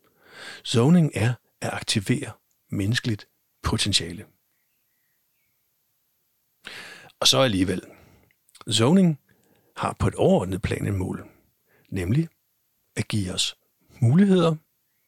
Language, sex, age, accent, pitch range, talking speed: Danish, male, 60-79, native, 100-130 Hz, 90 wpm